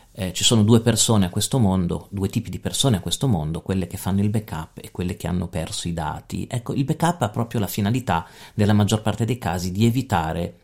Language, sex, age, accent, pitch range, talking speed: Italian, male, 40-59, native, 90-125 Hz, 230 wpm